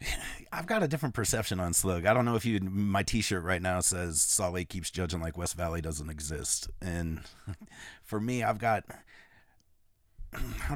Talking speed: 180 wpm